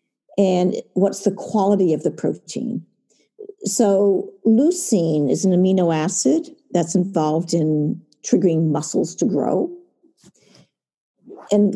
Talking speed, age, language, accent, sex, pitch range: 105 wpm, 50-69, English, American, female, 170-220 Hz